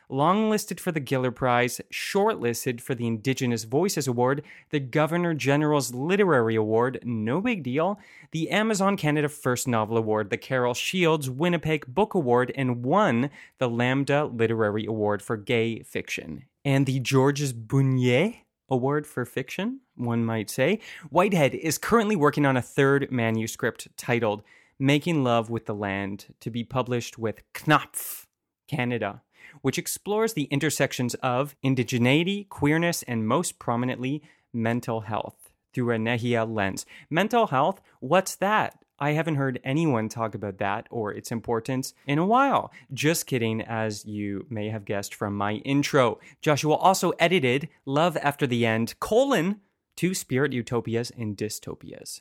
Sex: male